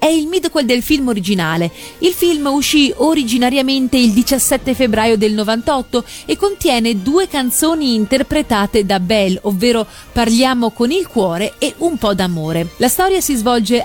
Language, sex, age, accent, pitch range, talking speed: Italian, female, 30-49, native, 220-290 Hz, 150 wpm